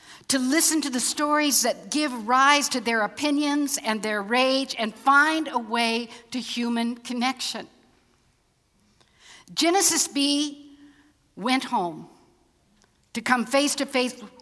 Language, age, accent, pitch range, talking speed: English, 60-79, American, 195-270 Hz, 125 wpm